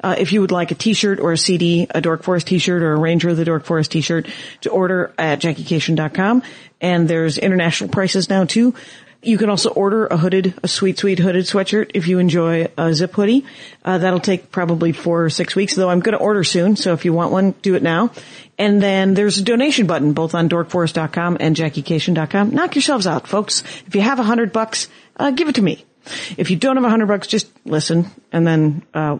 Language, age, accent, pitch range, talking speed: English, 40-59, American, 160-205 Hz, 220 wpm